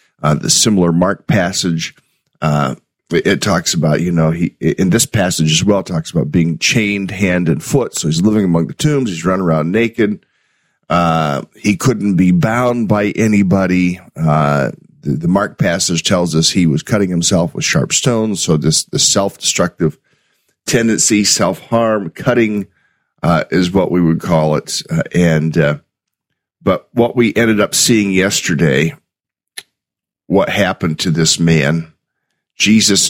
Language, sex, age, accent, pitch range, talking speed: English, male, 40-59, American, 85-105 Hz, 160 wpm